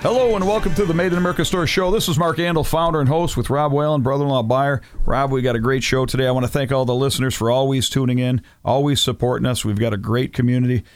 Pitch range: 115-135 Hz